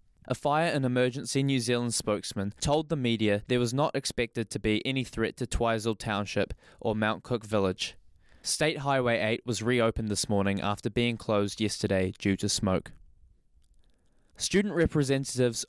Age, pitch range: 20-39, 110-140 Hz